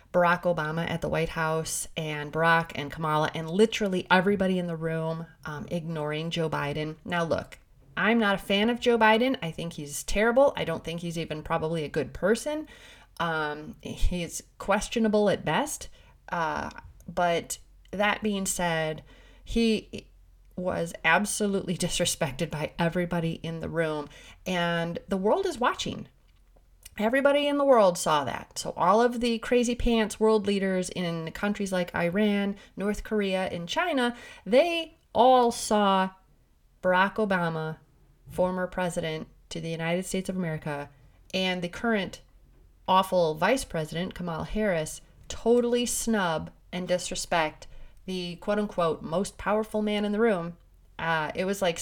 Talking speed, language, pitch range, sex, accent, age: 145 wpm, English, 165-210 Hz, female, American, 30-49